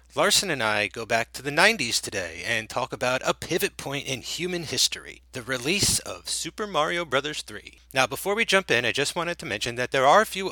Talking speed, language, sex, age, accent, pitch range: 230 wpm, English, male, 30-49, American, 130-180 Hz